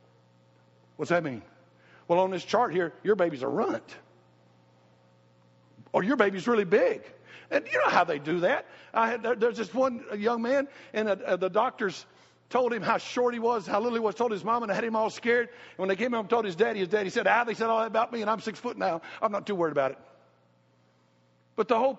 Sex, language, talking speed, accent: male, English, 230 wpm, American